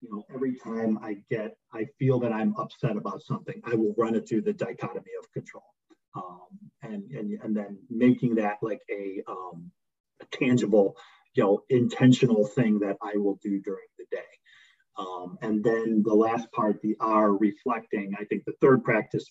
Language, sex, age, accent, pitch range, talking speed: English, male, 40-59, American, 110-130 Hz, 185 wpm